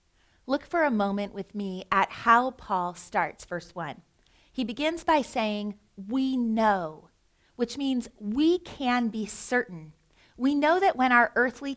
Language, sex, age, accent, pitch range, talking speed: English, female, 30-49, American, 200-255 Hz, 155 wpm